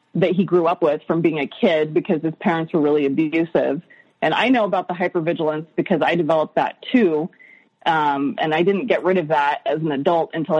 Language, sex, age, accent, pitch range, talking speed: English, female, 30-49, American, 155-195 Hz, 215 wpm